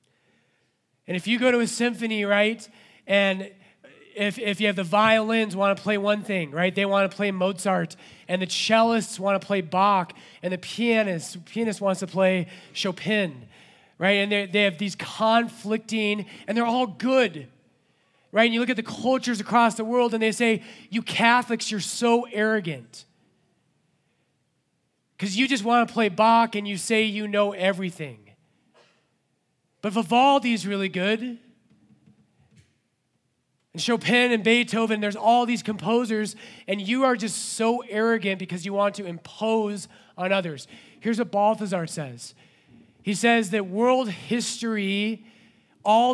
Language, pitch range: English, 190-230 Hz